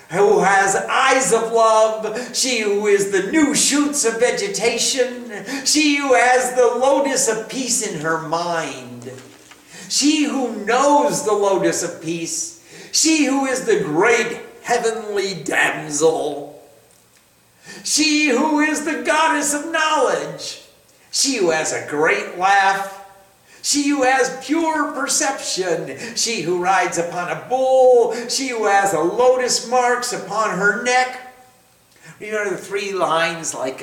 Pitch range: 190-275 Hz